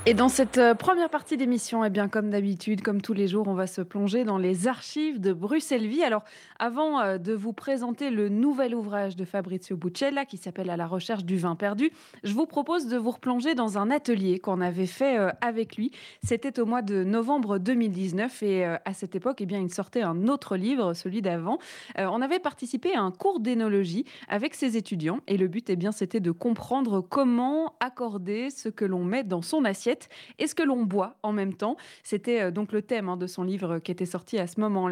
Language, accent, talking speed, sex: French, French, 215 wpm, female